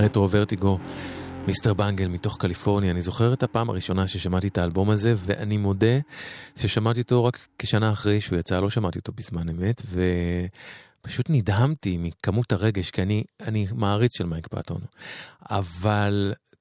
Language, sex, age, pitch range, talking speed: English, male, 30-49, 95-120 Hz, 120 wpm